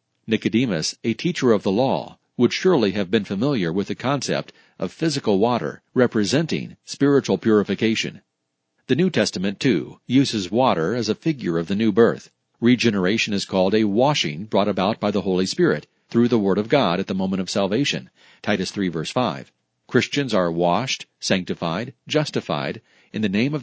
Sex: male